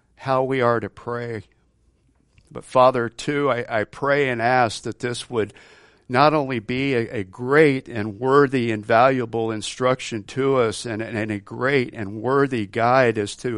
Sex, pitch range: male, 100-125 Hz